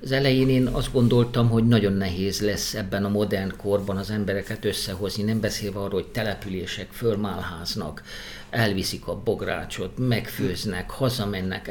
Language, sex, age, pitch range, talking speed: Hungarian, male, 50-69, 100-120 Hz, 140 wpm